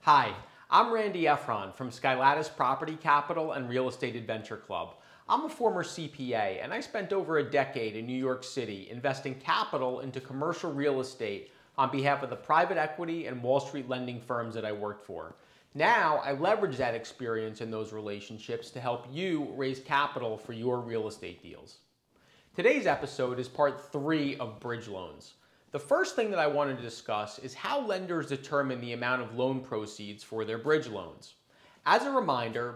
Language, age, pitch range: English, 30-49, 120-155 Hz